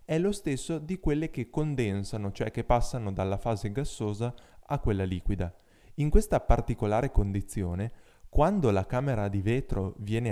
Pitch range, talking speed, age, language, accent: 100-135 Hz, 150 wpm, 20-39, Italian, native